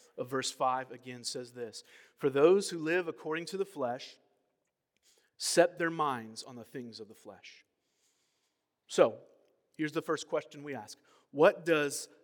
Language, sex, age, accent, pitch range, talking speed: English, male, 30-49, American, 145-180 Hz, 155 wpm